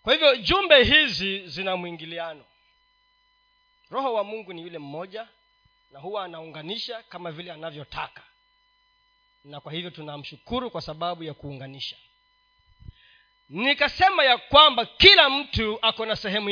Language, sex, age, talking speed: Swahili, male, 40-59, 125 wpm